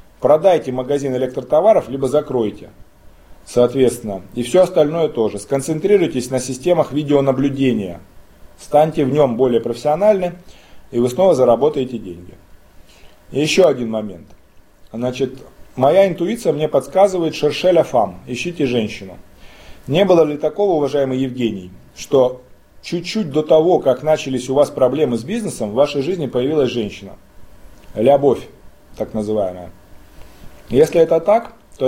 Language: Russian